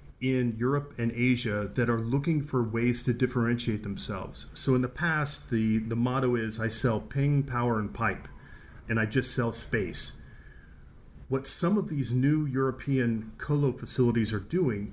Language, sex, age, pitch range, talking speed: English, male, 40-59, 110-135 Hz, 165 wpm